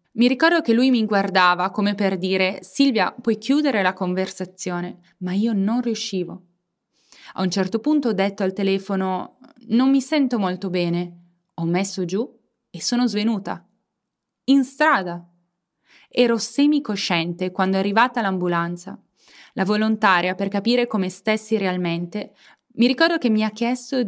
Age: 20-39